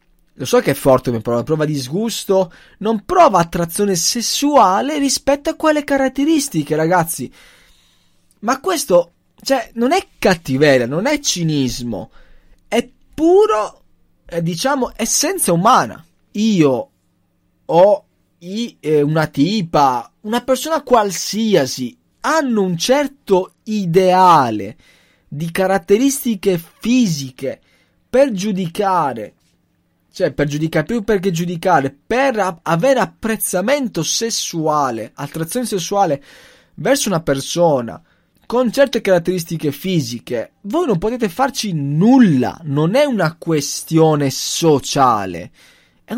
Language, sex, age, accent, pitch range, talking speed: Italian, male, 20-39, native, 155-245 Hz, 105 wpm